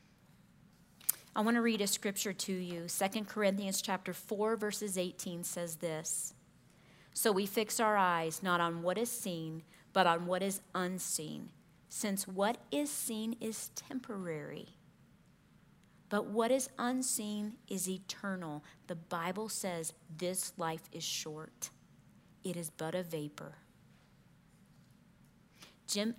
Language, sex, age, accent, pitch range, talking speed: English, female, 40-59, American, 170-210 Hz, 130 wpm